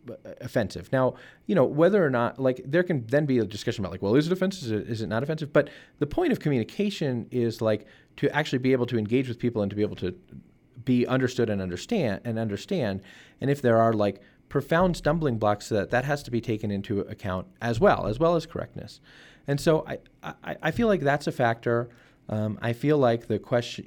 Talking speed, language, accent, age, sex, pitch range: 225 wpm, English, American, 30-49, male, 100-130 Hz